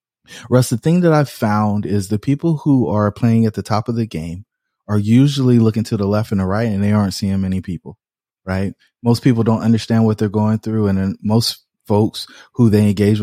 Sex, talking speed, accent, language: male, 220 wpm, American, English